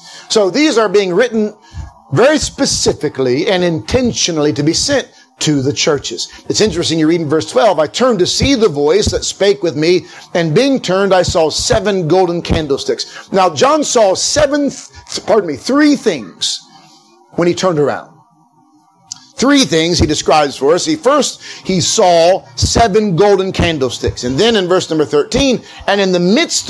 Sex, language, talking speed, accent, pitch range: male, English, 170 wpm, American, 150-215 Hz